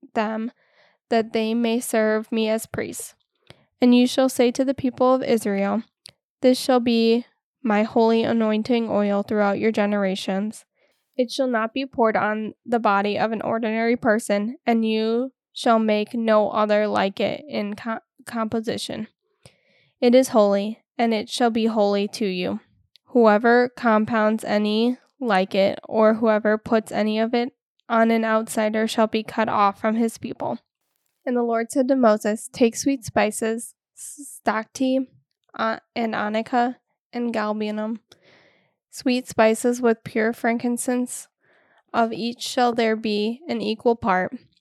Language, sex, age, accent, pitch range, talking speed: English, female, 10-29, American, 215-245 Hz, 145 wpm